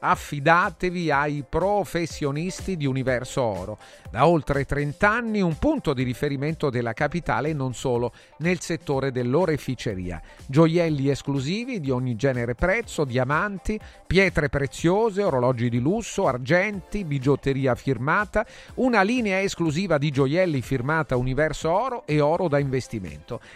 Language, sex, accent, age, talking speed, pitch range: Italian, male, native, 40-59, 120 wpm, 130-185 Hz